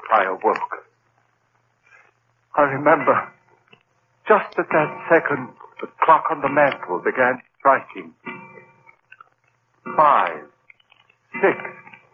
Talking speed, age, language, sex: 85 wpm, 60-79, English, male